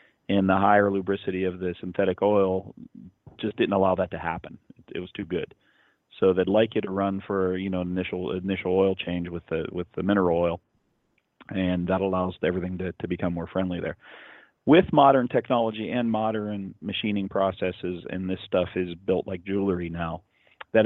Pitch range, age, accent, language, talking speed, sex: 90-100 Hz, 30-49, American, English, 185 wpm, male